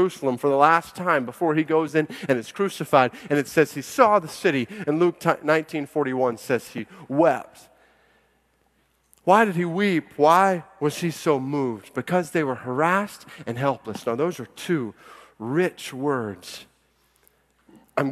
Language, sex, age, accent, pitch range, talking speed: English, male, 30-49, American, 115-150 Hz, 150 wpm